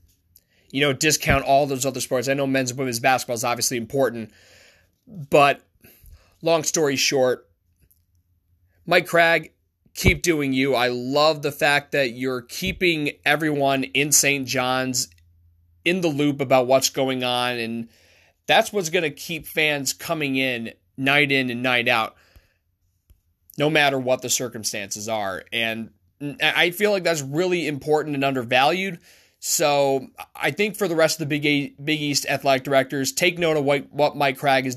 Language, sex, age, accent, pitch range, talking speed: English, male, 20-39, American, 115-145 Hz, 155 wpm